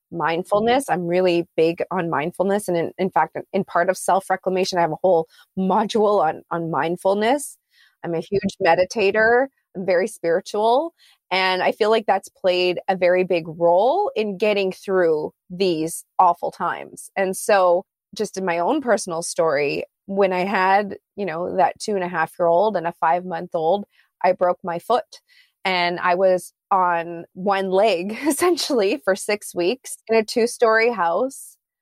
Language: English